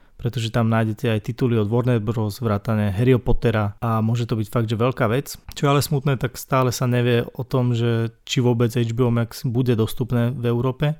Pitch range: 110-125 Hz